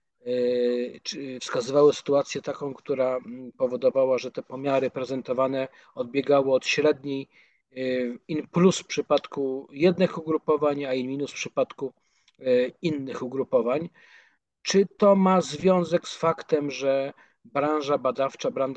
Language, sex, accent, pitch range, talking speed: Polish, male, native, 135-155 Hz, 105 wpm